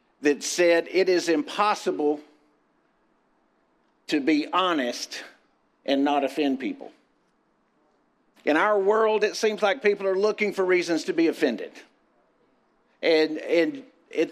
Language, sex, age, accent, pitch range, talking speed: English, male, 50-69, American, 165-220 Hz, 120 wpm